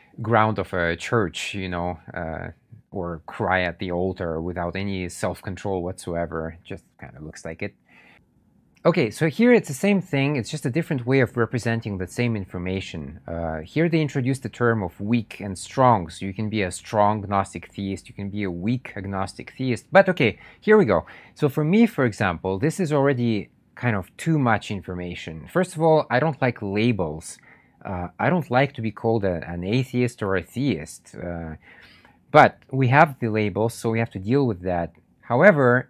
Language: English